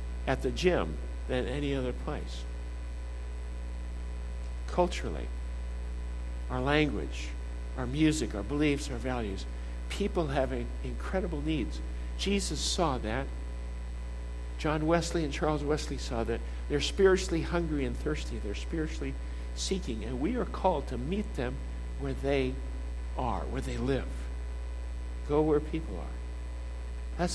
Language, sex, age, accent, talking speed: English, male, 60-79, American, 125 wpm